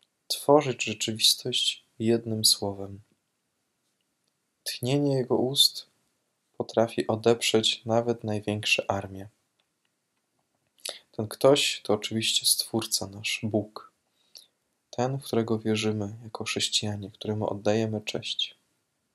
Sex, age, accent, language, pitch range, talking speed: male, 20-39, native, Polish, 105-120 Hz, 90 wpm